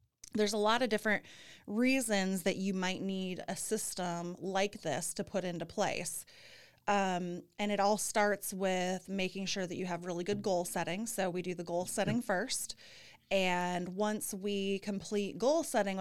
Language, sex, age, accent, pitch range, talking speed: English, female, 30-49, American, 180-205 Hz, 170 wpm